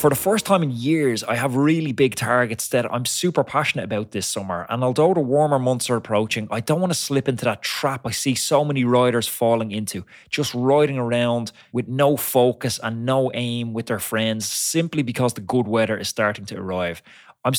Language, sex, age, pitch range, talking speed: English, male, 20-39, 110-135 Hz, 210 wpm